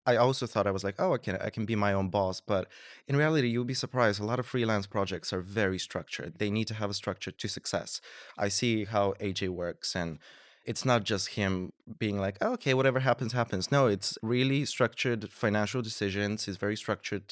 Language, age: English, 20-39